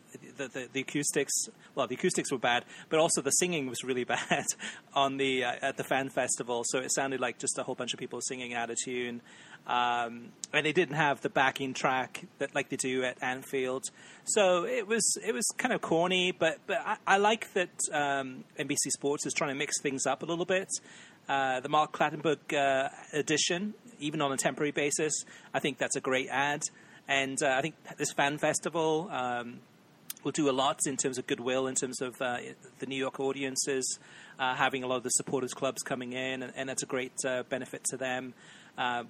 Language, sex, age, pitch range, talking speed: English, male, 30-49, 130-155 Hz, 210 wpm